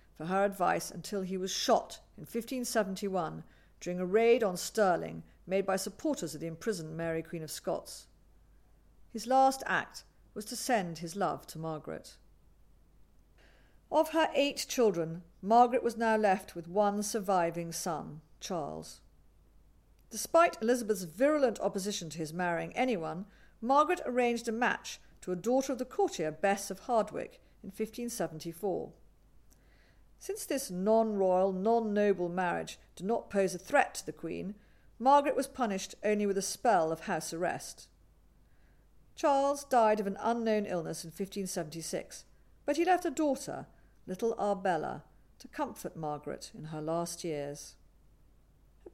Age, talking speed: 50-69, 140 wpm